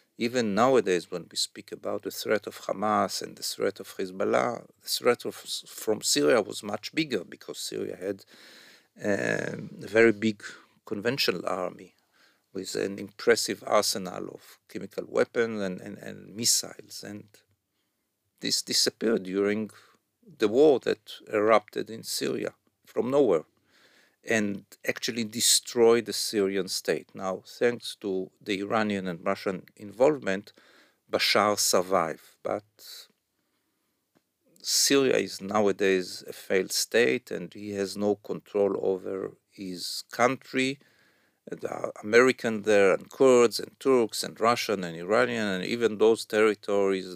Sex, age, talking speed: male, 50-69, 130 wpm